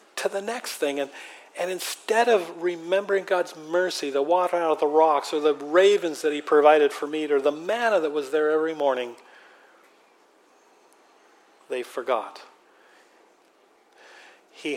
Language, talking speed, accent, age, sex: English, 140 wpm, American, 40-59, male